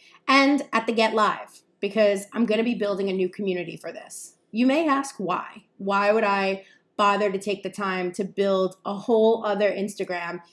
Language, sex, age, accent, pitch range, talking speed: English, female, 30-49, American, 195-235 Hz, 195 wpm